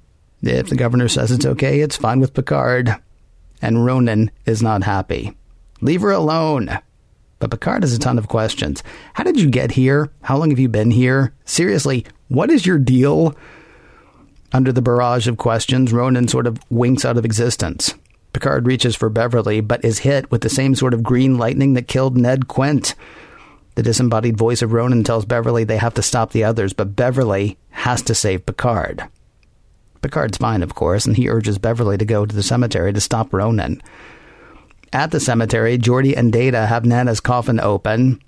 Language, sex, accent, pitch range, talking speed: English, male, American, 115-135 Hz, 180 wpm